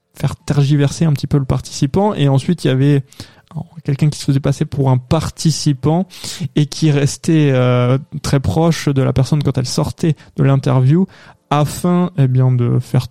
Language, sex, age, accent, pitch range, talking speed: French, male, 20-39, French, 135-165 Hz, 180 wpm